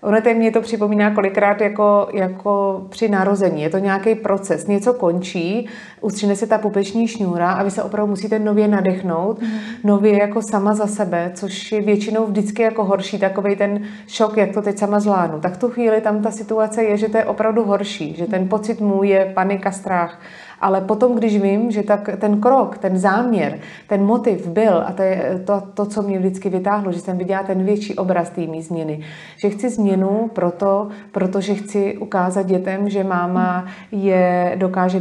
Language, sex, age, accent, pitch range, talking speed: Czech, female, 30-49, native, 185-210 Hz, 185 wpm